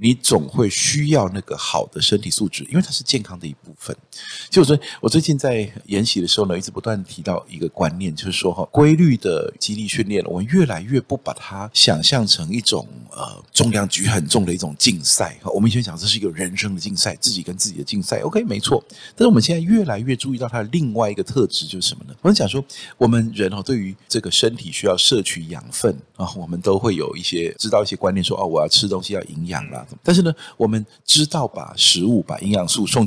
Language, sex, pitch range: Chinese, male, 95-140 Hz